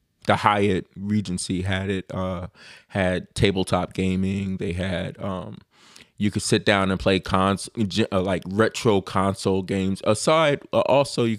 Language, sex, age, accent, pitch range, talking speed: English, male, 20-39, American, 95-100 Hz, 140 wpm